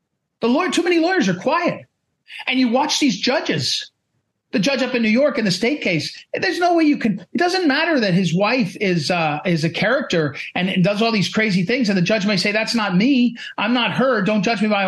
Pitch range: 180-255 Hz